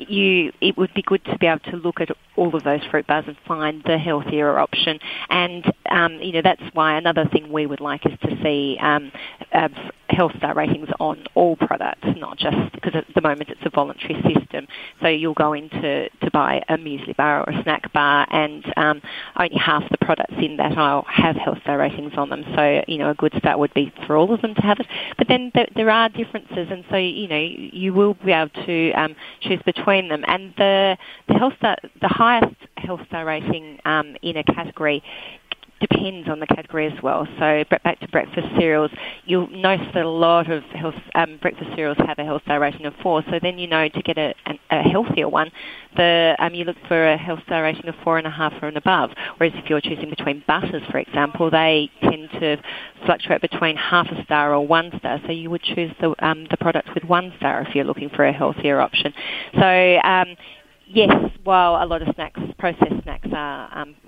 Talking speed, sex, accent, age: 220 wpm, female, Australian, 30-49